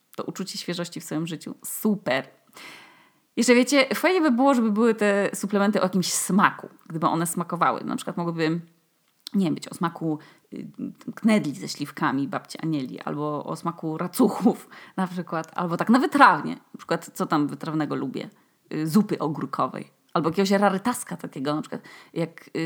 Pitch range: 165-230 Hz